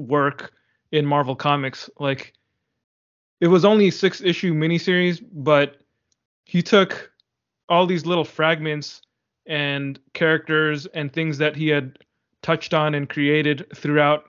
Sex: male